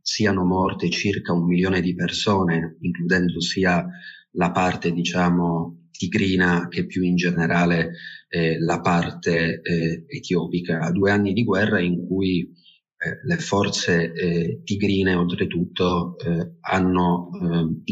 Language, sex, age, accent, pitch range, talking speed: Italian, male, 30-49, native, 85-95 Hz, 125 wpm